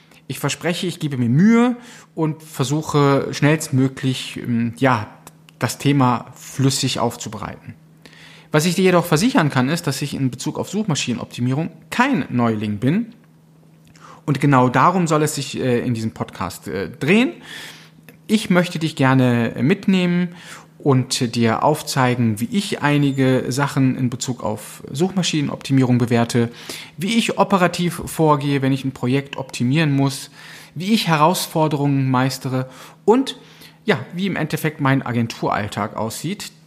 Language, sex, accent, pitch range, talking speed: German, male, German, 130-170 Hz, 130 wpm